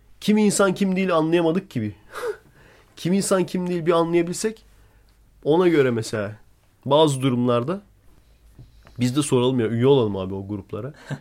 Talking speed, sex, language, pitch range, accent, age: 140 wpm, male, Turkish, 105-145 Hz, native, 40-59